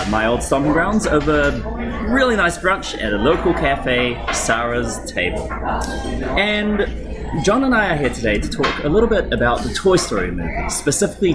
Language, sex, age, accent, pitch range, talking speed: English, male, 30-49, Australian, 105-140 Hz, 175 wpm